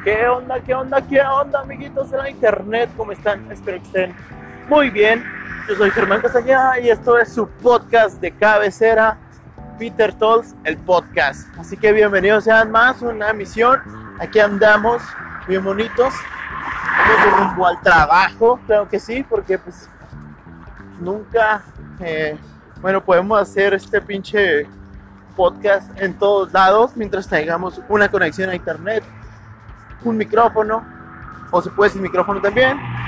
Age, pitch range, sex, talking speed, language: 30-49, 150-230 Hz, male, 140 wpm, Spanish